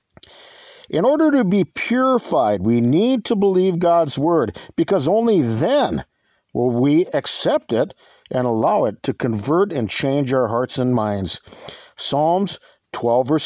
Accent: American